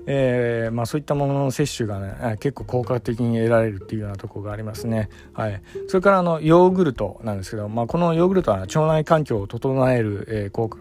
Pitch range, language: 110-145 Hz, Japanese